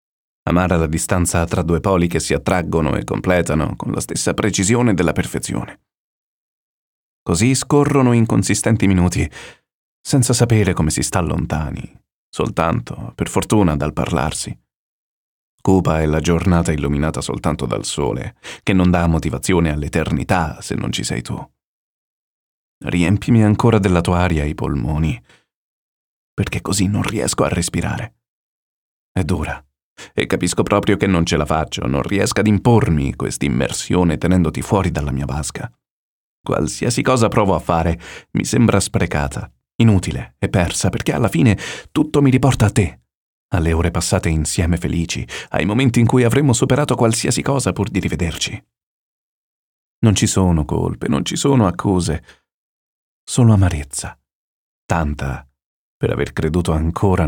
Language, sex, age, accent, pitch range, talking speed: Italian, male, 30-49, native, 80-105 Hz, 140 wpm